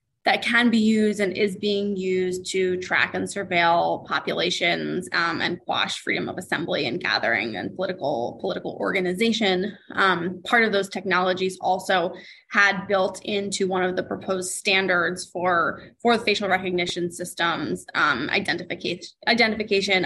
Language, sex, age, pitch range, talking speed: English, female, 20-39, 185-215 Hz, 140 wpm